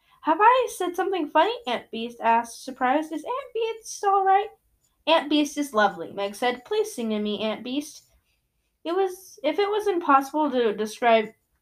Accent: American